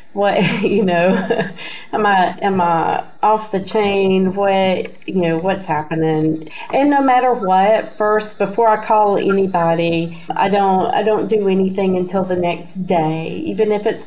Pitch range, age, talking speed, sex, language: 170-200 Hz, 40-59, 160 wpm, female, English